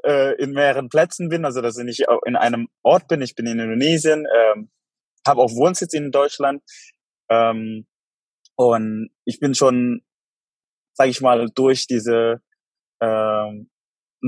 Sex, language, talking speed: male, German, 140 wpm